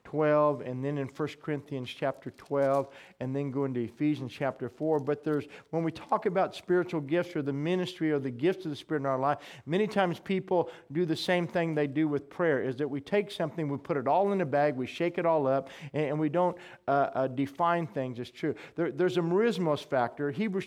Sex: male